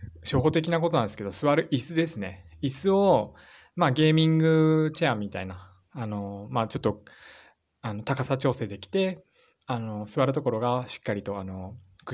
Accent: native